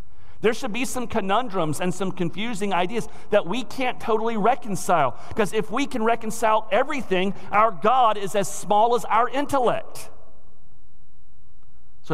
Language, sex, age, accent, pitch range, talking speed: English, male, 50-69, American, 130-205 Hz, 145 wpm